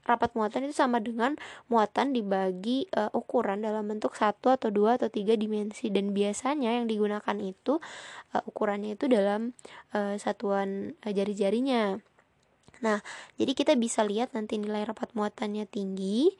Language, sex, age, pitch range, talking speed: Indonesian, female, 20-39, 205-250 Hz, 150 wpm